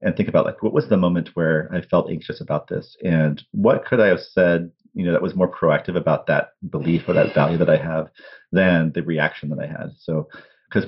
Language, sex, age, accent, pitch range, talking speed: English, male, 40-59, American, 80-90 Hz, 235 wpm